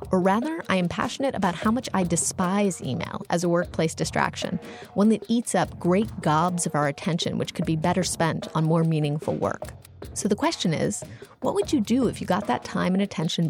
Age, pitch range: 30-49, 165-205 Hz